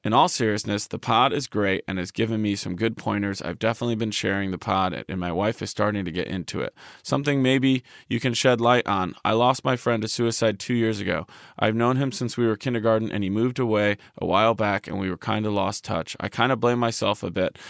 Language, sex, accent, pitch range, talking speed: English, male, American, 100-120 Hz, 250 wpm